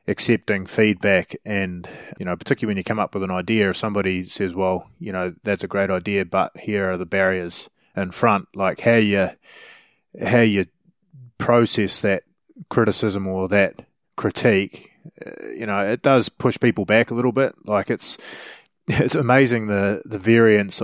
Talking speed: 165 wpm